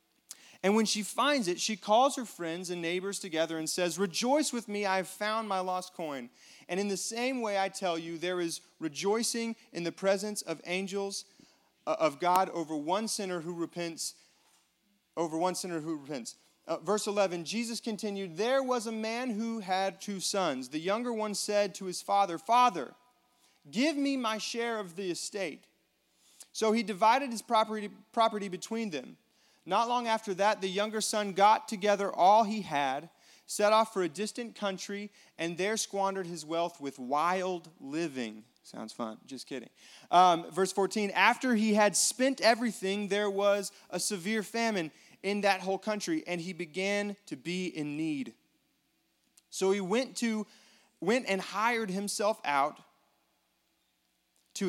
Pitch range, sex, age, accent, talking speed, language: 180-220 Hz, male, 30-49, American, 165 wpm, English